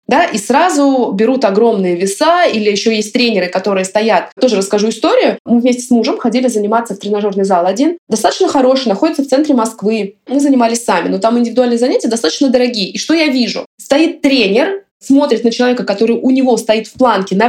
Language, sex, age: Russian, female, 20-39